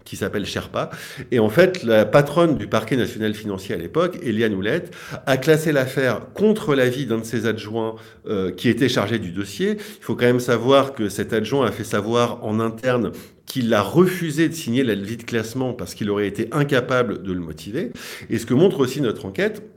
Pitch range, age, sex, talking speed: 110-145 Hz, 50-69, male, 205 wpm